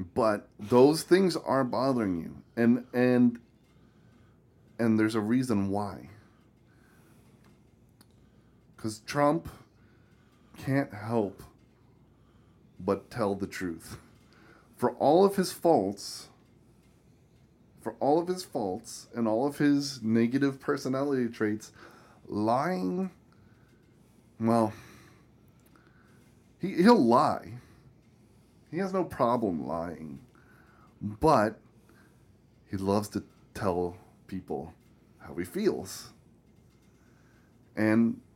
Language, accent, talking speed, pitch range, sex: English, American, 90 wpm, 110-155 Hz, male